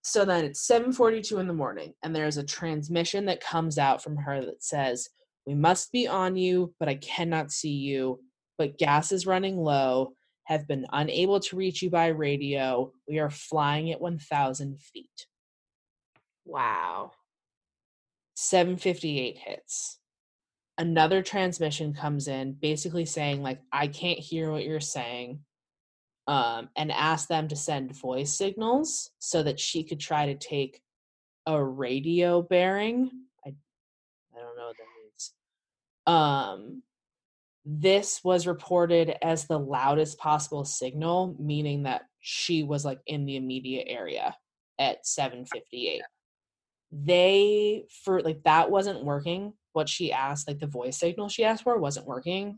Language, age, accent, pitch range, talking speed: English, 20-39, American, 140-185 Hz, 145 wpm